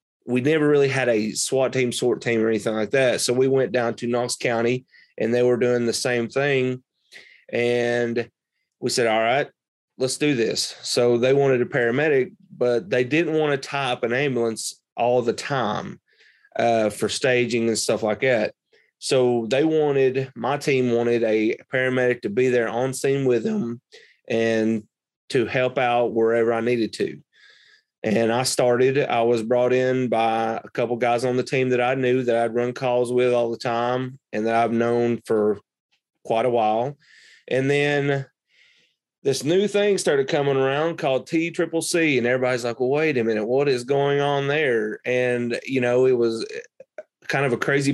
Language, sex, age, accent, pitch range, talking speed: English, male, 30-49, American, 120-140 Hz, 185 wpm